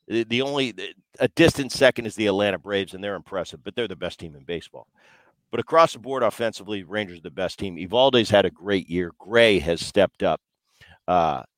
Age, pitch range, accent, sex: 50-69, 95-120 Hz, American, male